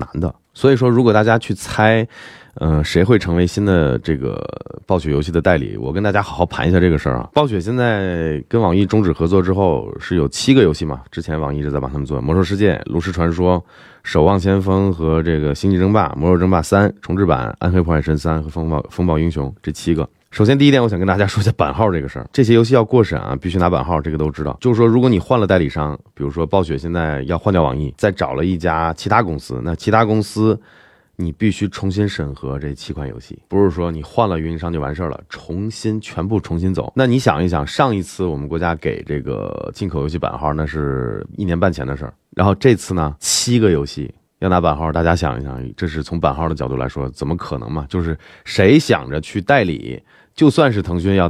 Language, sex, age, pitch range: Chinese, male, 20-39, 80-100 Hz